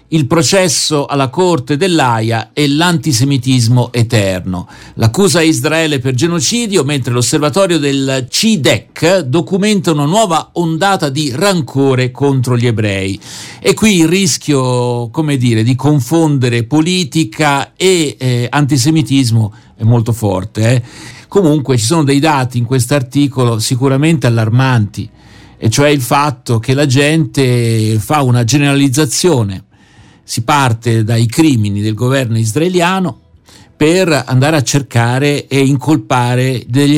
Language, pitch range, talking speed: Italian, 115-155 Hz, 120 wpm